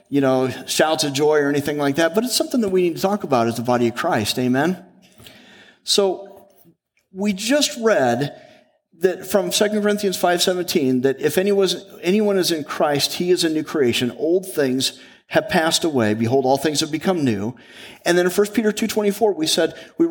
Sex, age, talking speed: male, 40-59, 190 wpm